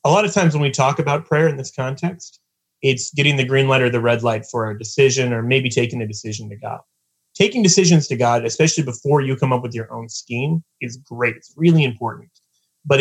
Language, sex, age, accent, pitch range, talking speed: English, male, 30-49, American, 110-150 Hz, 230 wpm